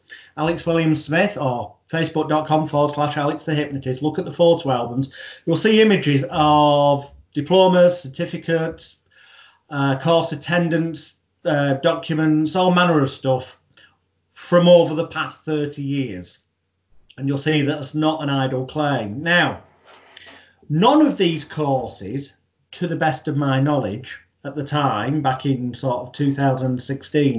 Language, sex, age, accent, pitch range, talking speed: English, male, 30-49, British, 130-165 Hz, 135 wpm